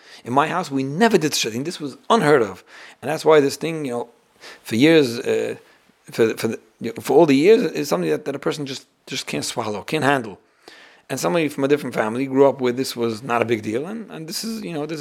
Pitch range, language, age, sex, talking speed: 120-160 Hz, English, 40-59, male, 255 wpm